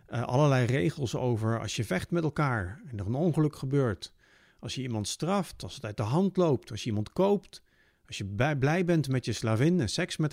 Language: Dutch